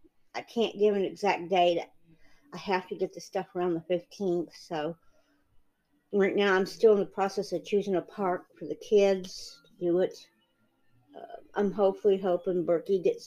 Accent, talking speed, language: American, 175 wpm, English